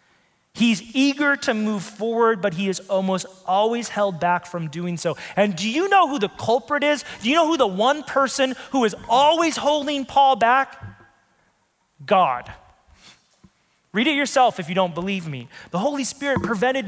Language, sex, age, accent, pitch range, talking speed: English, male, 30-49, American, 160-230 Hz, 175 wpm